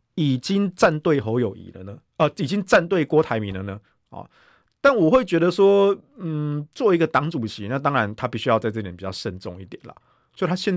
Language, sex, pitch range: Chinese, male, 105-150 Hz